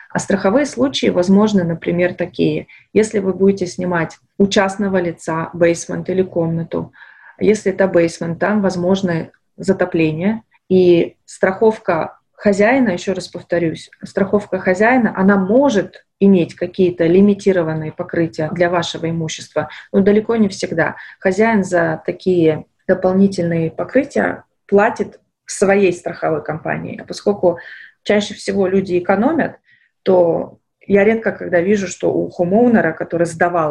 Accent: native